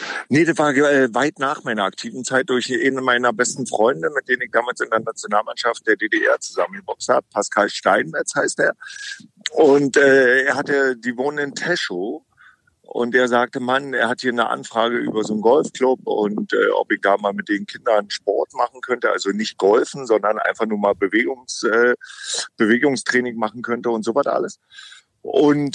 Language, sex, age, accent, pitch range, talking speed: German, male, 50-69, German, 110-145 Hz, 185 wpm